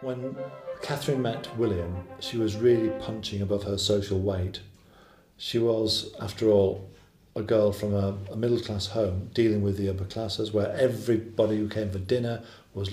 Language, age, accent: English, 50-69, British